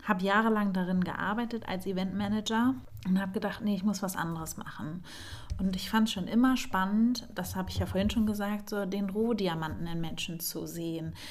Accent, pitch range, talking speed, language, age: German, 185-225 Hz, 190 wpm, German, 30-49